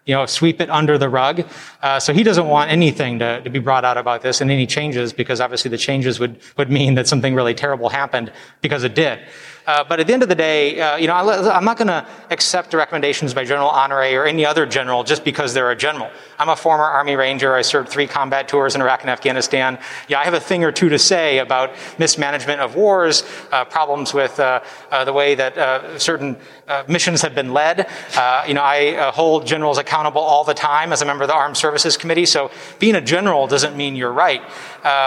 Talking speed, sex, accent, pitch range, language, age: 235 wpm, male, American, 135-155 Hz, English, 30-49